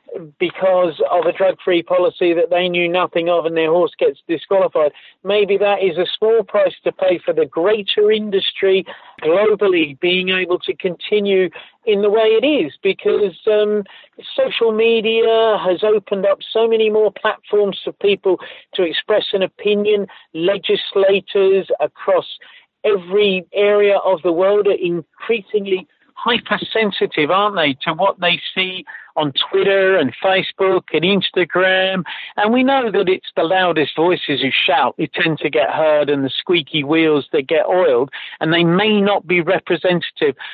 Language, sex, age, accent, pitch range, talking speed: English, male, 50-69, British, 175-210 Hz, 155 wpm